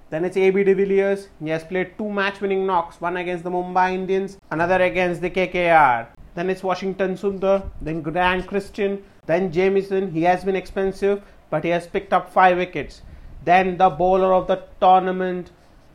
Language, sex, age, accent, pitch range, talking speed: English, male, 30-49, Indian, 180-200 Hz, 175 wpm